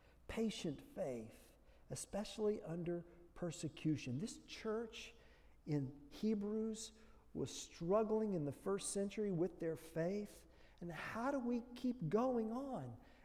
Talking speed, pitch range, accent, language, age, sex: 115 wpm, 155-230 Hz, American, English, 50-69, male